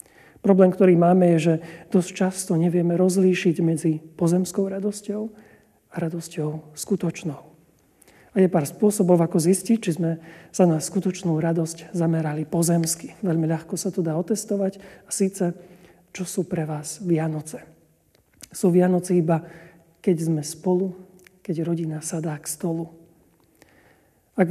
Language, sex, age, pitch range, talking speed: Slovak, male, 40-59, 165-190 Hz, 130 wpm